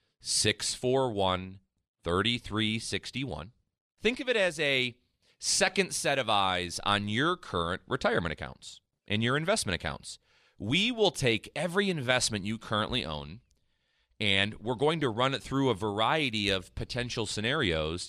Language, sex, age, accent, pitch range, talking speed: English, male, 30-49, American, 95-130 Hz, 125 wpm